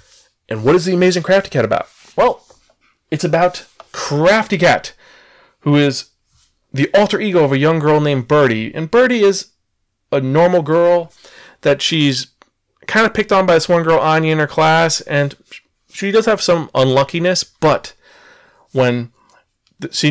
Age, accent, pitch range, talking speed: 30-49, American, 140-185 Hz, 160 wpm